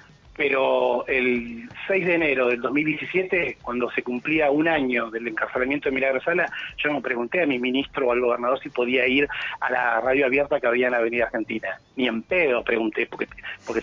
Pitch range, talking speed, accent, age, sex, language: 125-170 Hz, 190 wpm, Argentinian, 30-49, male, Spanish